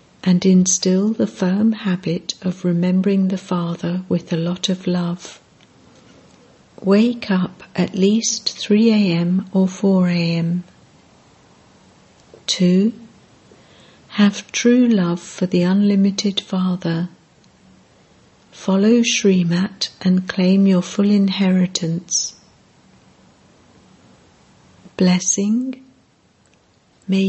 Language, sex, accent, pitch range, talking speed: English, female, British, 180-205 Hz, 85 wpm